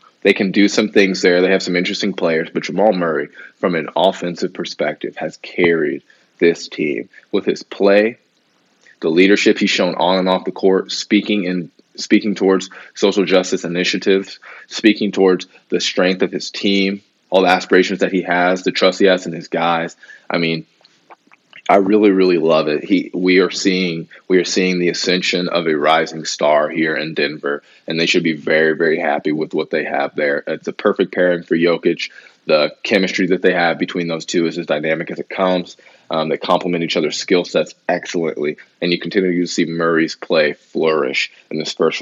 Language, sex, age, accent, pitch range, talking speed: English, male, 20-39, American, 85-100 Hz, 195 wpm